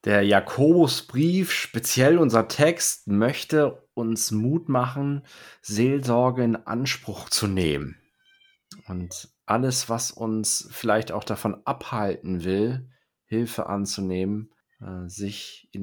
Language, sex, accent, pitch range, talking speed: German, male, German, 90-115 Hz, 105 wpm